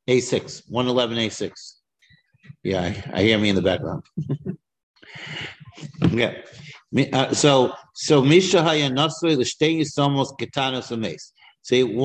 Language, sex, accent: English, male, American